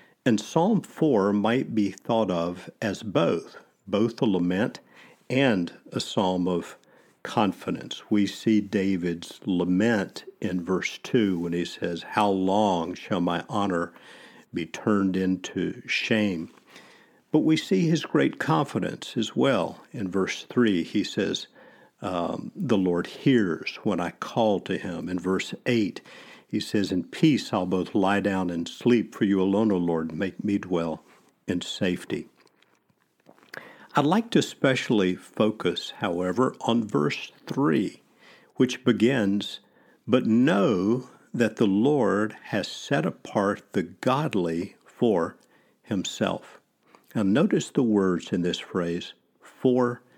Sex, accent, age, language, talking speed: male, American, 50-69, English, 135 wpm